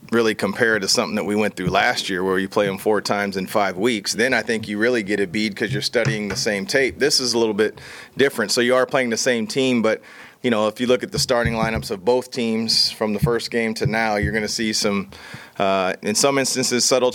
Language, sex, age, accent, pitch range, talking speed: English, male, 30-49, American, 105-120 Hz, 260 wpm